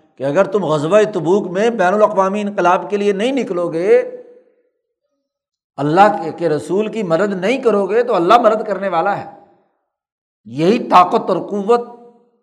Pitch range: 175-235 Hz